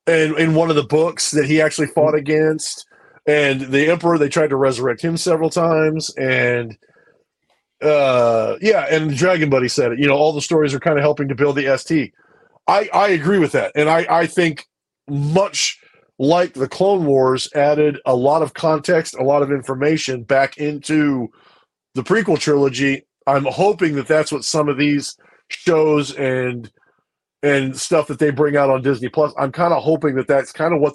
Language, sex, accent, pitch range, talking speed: English, male, American, 130-155 Hz, 190 wpm